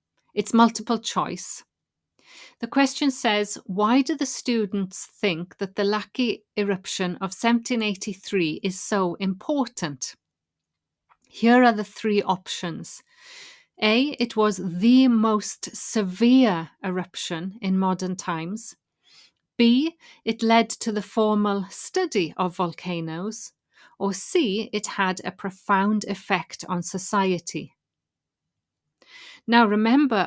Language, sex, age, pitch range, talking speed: English, female, 30-49, 185-235 Hz, 110 wpm